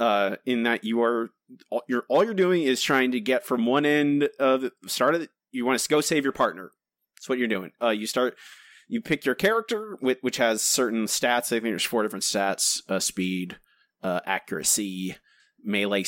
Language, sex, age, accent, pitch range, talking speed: English, male, 30-49, American, 110-135 Hz, 205 wpm